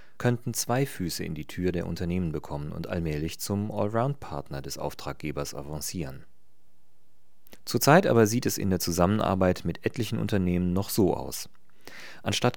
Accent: German